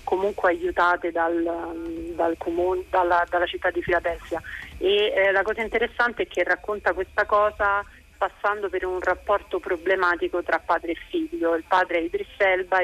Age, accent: 30-49, native